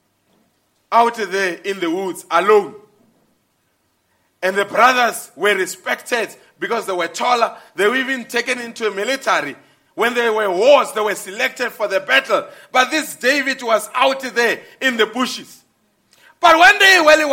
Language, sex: English, male